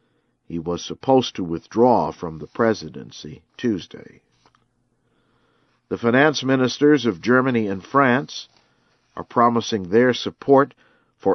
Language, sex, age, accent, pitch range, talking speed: English, male, 50-69, American, 100-120 Hz, 110 wpm